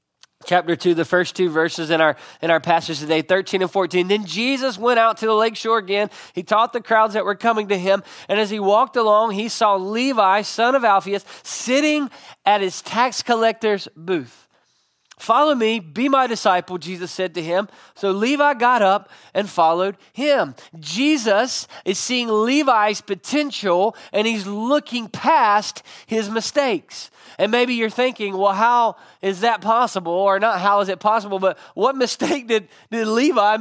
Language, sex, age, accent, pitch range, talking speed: English, male, 20-39, American, 185-230 Hz, 175 wpm